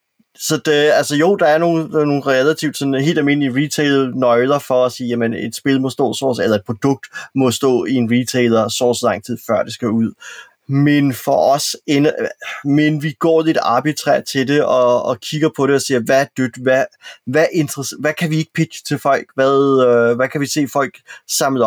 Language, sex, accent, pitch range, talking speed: Danish, male, native, 125-155 Hz, 210 wpm